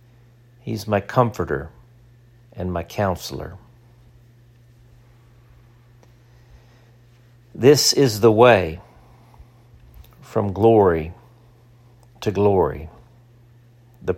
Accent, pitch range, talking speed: American, 100-120 Hz, 65 wpm